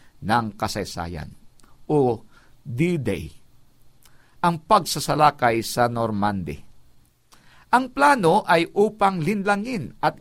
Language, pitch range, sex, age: Filipino, 125-200 Hz, male, 50-69